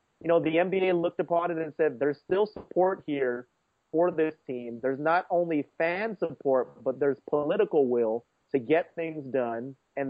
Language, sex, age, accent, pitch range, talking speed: English, male, 30-49, American, 115-145 Hz, 180 wpm